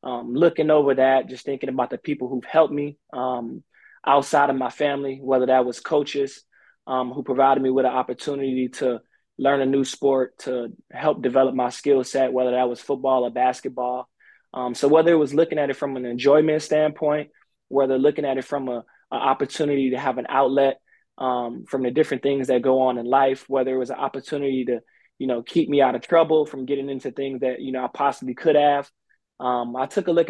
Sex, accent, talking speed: male, American, 210 wpm